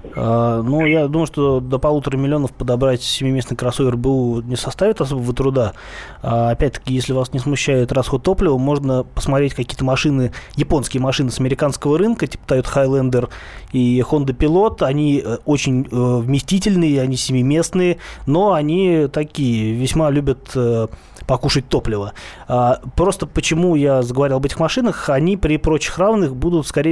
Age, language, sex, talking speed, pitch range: 20-39, Russian, male, 155 wpm, 130-155 Hz